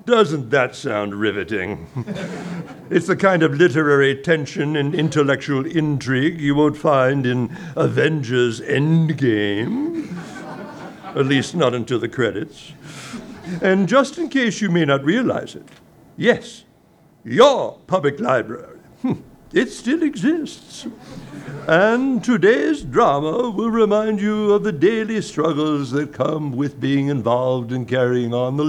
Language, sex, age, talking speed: English, male, 60-79, 125 wpm